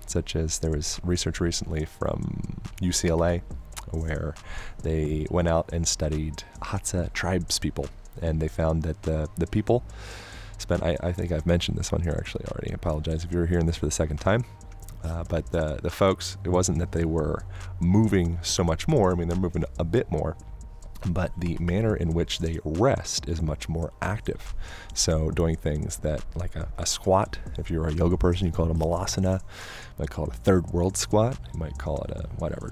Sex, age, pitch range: male, 30-49, 80-95 Hz